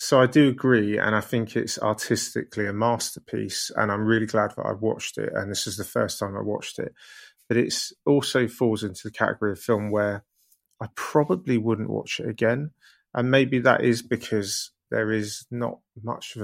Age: 30-49